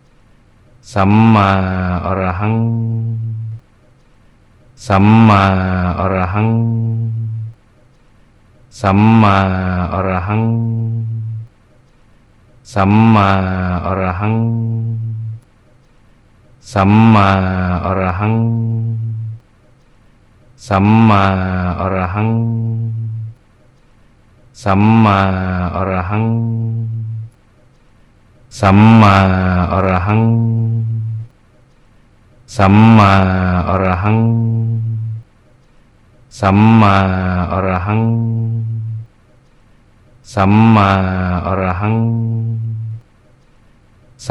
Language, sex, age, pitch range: Thai, male, 40-59, 95-115 Hz